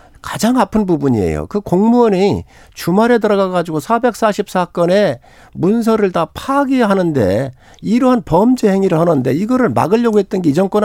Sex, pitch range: male, 140-215 Hz